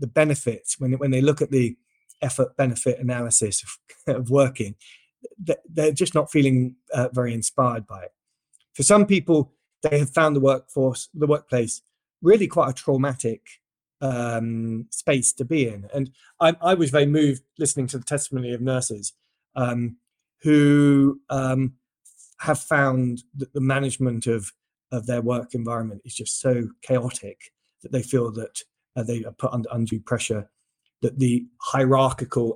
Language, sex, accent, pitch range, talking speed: English, male, British, 115-145 Hz, 155 wpm